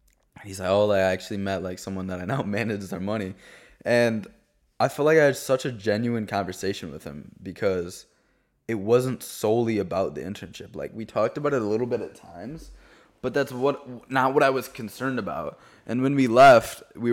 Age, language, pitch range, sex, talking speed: 20-39, English, 95-120 Hz, male, 200 wpm